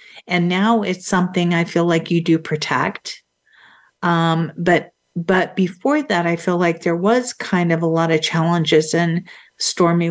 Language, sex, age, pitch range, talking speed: English, female, 50-69, 165-185 Hz, 165 wpm